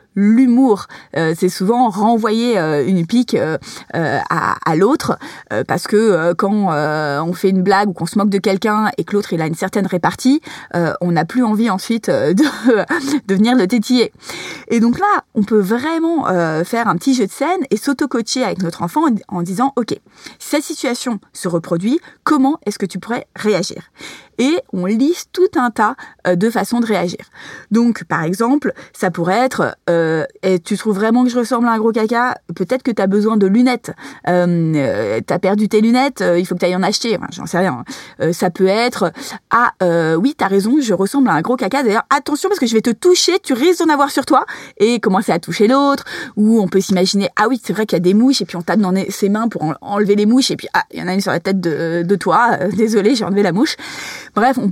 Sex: female